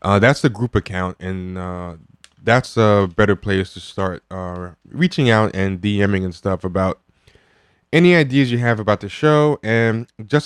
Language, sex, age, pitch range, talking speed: English, male, 20-39, 95-120 Hz, 170 wpm